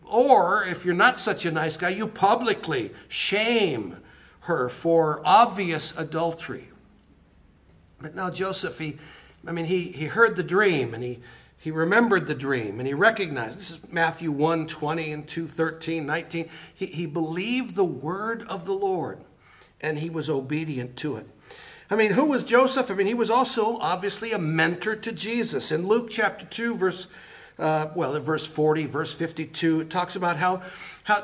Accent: American